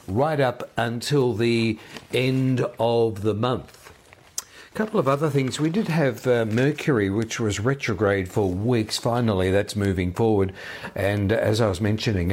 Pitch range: 95-115 Hz